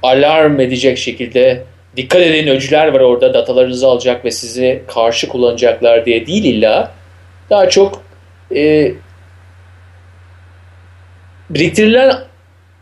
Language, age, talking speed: Turkish, 40-59, 100 wpm